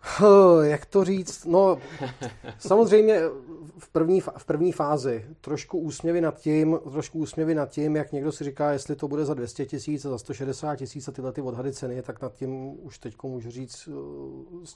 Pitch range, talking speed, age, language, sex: 120-140 Hz, 185 wpm, 30-49, Czech, male